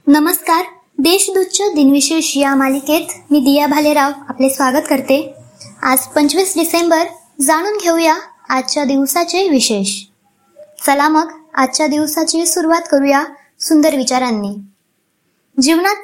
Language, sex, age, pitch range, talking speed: Marathi, male, 20-39, 265-325 Hz, 95 wpm